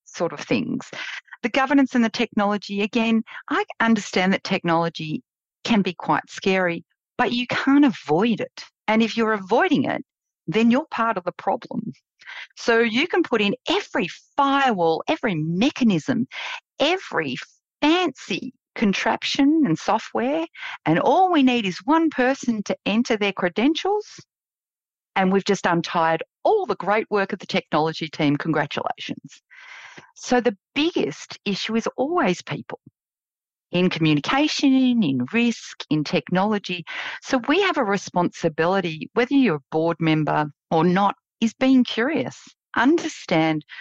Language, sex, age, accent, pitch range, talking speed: English, female, 50-69, Australian, 180-270 Hz, 135 wpm